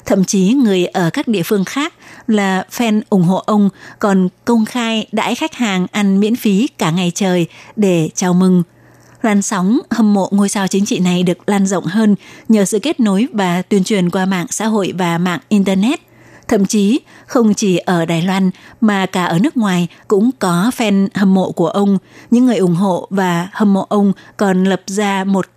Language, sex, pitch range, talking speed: Vietnamese, female, 185-225 Hz, 200 wpm